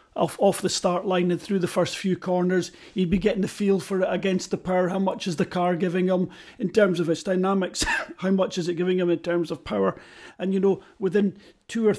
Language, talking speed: English, 245 wpm